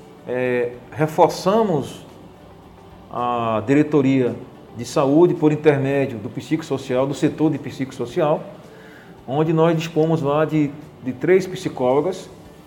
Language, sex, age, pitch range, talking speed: Portuguese, male, 40-59, 130-160 Hz, 105 wpm